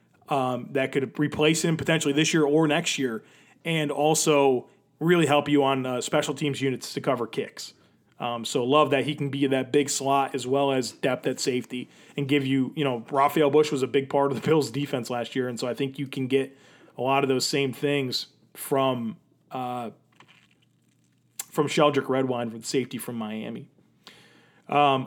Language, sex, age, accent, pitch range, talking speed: English, male, 30-49, American, 135-155 Hz, 190 wpm